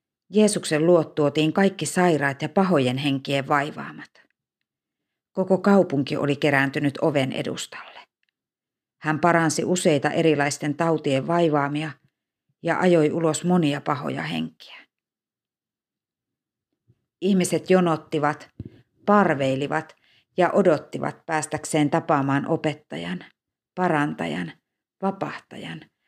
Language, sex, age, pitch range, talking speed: Finnish, female, 50-69, 145-175 Hz, 85 wpm